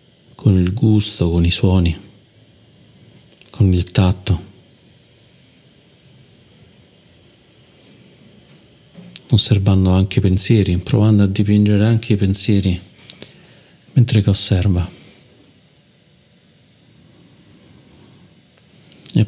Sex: male